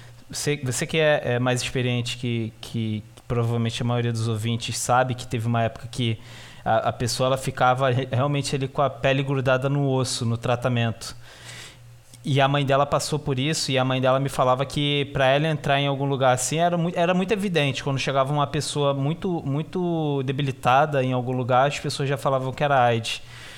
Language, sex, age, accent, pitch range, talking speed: Portuguese, male, 20-39, Brazilian, 125-145 Hz, 205 wpm